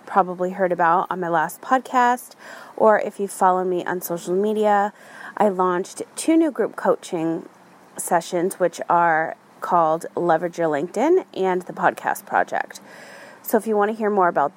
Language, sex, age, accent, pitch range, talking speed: English, female, 30-49, American, 185-235 Hz, 165 wpm